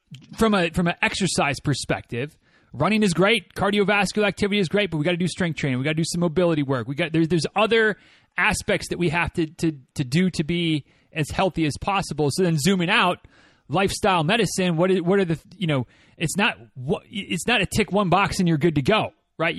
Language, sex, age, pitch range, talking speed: English, male, 30-49, 155-200 Hz, 225 wpm